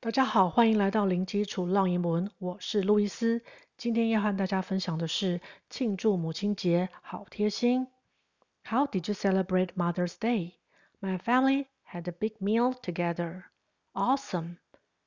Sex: female